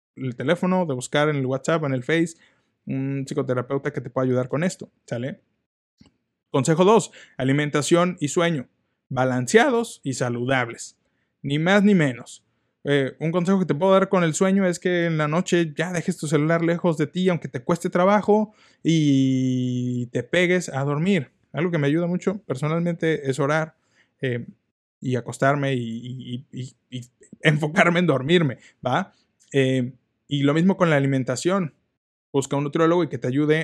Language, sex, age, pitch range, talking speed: Spanish, male, 20-39, 135-180 Hz, 165 wpm